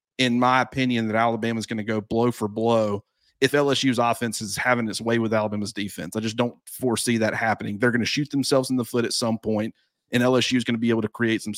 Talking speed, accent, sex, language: 255 wpm, American, male, English